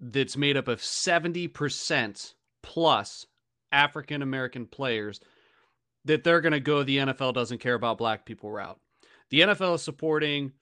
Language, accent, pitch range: English, American, 125-165 Hz